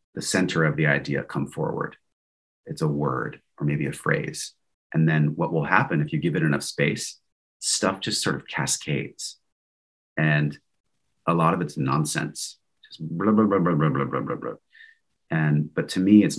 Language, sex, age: English, male, 30-49